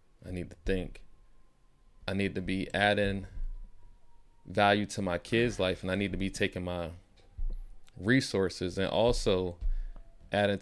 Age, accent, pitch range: 20-39, American, 95-110 Hz